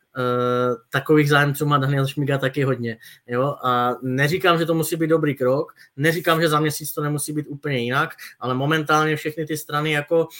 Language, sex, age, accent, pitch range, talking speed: Czech, male, 20-39, native, 135-160 Hz, 180 wpm